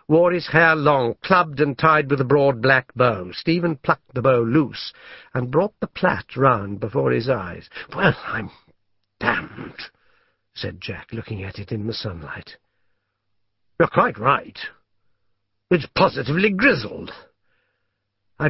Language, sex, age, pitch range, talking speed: English, male, 60-79, 115-165 Hz, 140 wpm